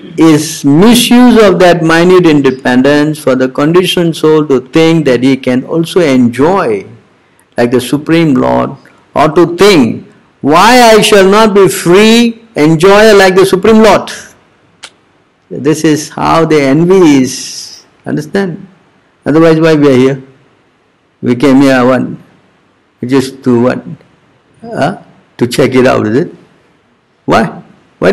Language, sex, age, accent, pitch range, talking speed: English, male, 60-79, Indian, 135-195 Hz, 135 wpm